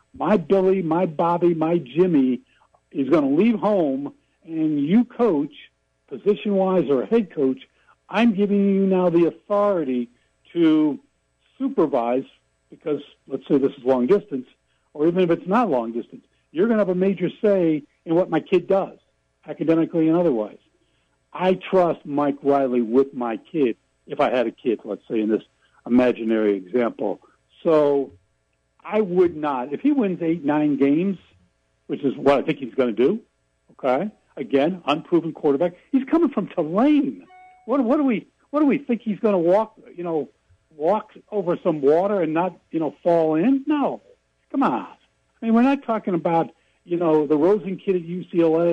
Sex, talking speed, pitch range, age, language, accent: male, 175 wpm, 145-210 Hz, 60-79, English, American